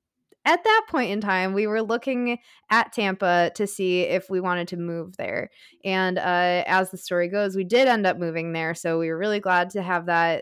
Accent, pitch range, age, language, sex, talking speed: American, 175-215 Hz, 20-39, English, female, 220 wpm